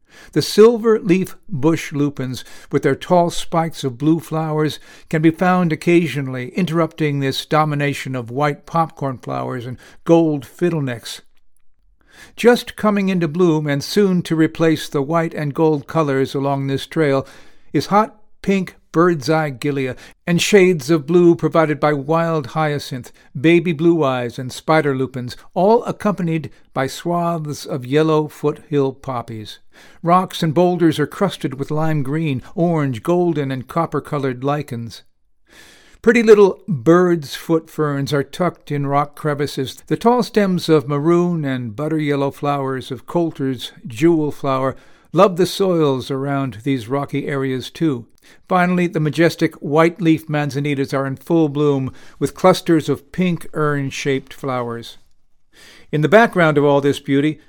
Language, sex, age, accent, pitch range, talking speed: English, male, 60-79, American, 140-170 Hz, 140 wpm